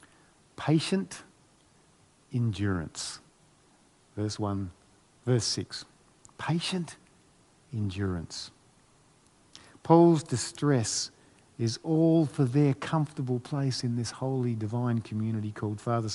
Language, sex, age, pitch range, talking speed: English, male, 50-69, 110-145 Hz, 85 wpm